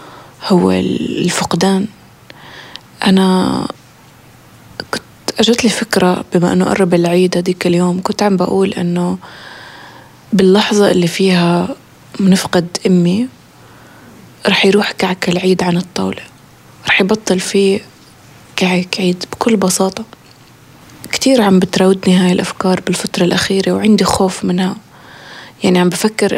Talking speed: 105 wpm